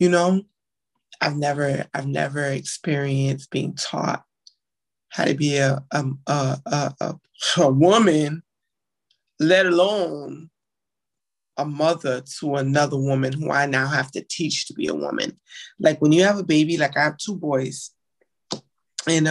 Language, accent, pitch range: English, American, 140-165 Hz